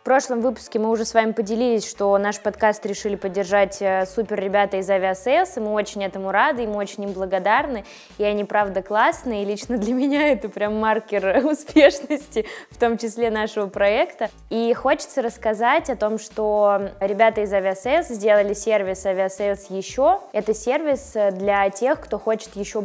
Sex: female